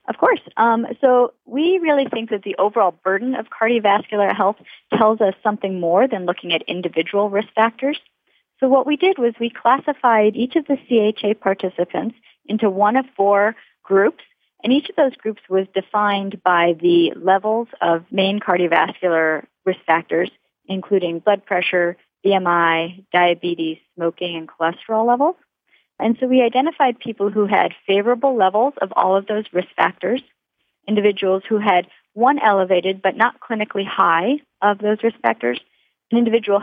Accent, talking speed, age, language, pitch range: American, 155 wpm, 40-59, English, 180-235 Hz